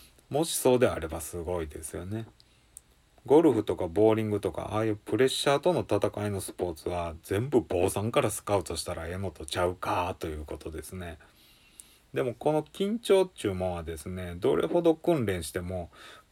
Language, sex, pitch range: Japanese, male, 90-120 Hz